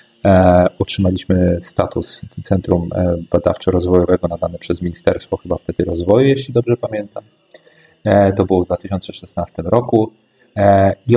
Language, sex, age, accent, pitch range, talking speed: Polish, male, 40-59, native, 95-120 Hz, 100 wpm